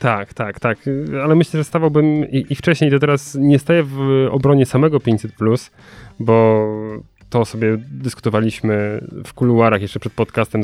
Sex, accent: male, native